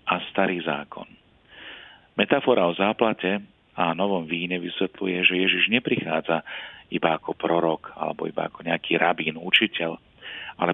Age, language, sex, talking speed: 40-59, Slovak, male, 130 wpm